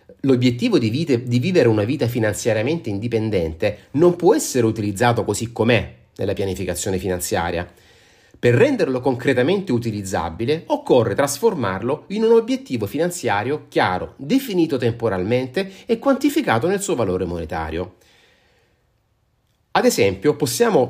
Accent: native